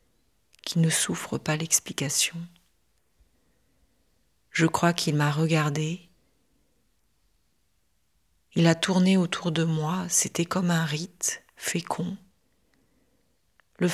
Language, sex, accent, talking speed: French, female, French, 95 wpm